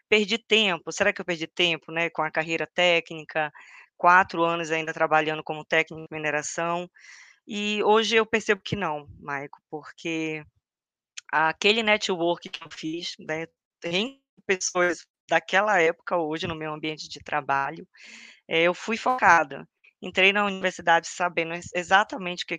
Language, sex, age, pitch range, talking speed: Portuguese, female, 20-39, 160-190 Hz, 145 wpm